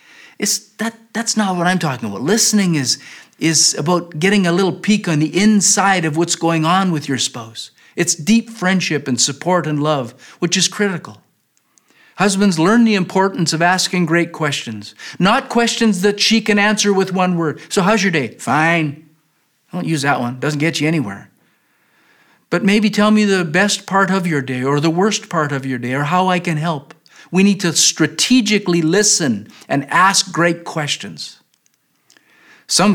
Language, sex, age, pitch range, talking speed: English, male, 50-69, 150-200 Hz, 180 wpm